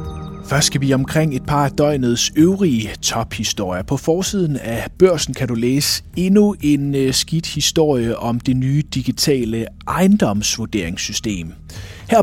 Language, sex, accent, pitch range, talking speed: Danish, male, native, 105-155 Hz, 130 wpm